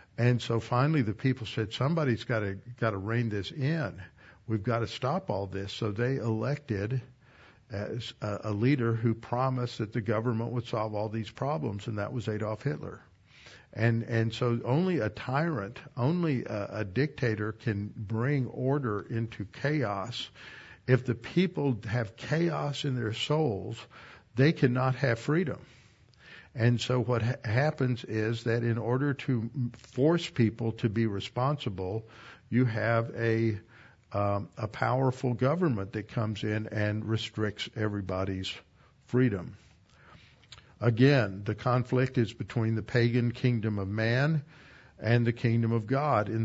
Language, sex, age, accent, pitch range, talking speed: English, male, 60-79, American, 110-130 Hz, 140 wpm